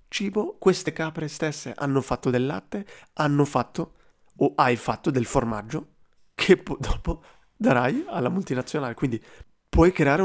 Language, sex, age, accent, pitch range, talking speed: Italian, male, 30-49, native, 125-160 Hz, 135 wpm